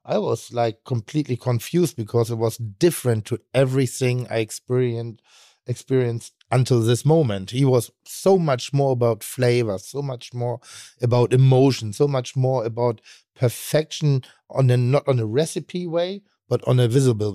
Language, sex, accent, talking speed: German, male, German, 155 wpm